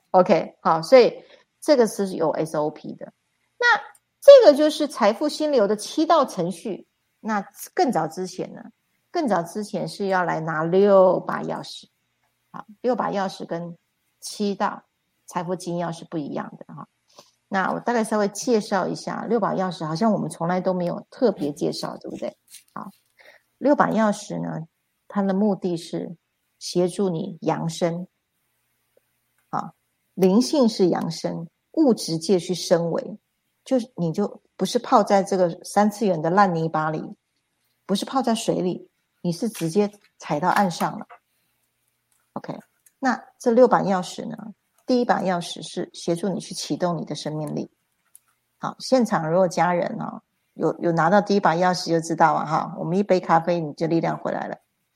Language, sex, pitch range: Chinese, female, 170-220 Hz